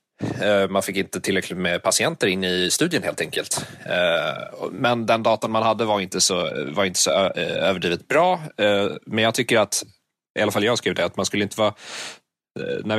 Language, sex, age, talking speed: Swedish, male, 30-49, 185 wpm